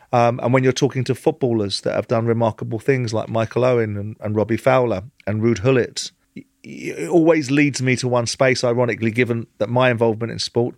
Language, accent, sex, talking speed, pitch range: English, British, male, 200 wpm, 110-125 Hz